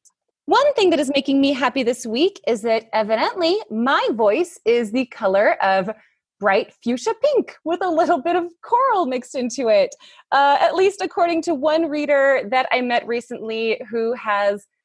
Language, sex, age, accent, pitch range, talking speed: English, female, 20-39, American, 220-315 Hz, 175 wpm